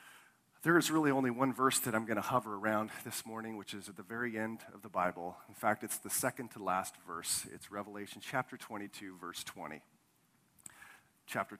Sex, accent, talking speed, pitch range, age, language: male, American, 195 wpm, 100-115 Hz, 40-59, English